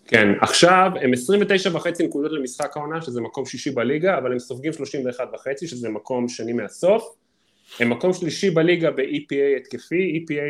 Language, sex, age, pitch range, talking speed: Hebrew, male, 20-39, 130-175 Hz, 160 wpm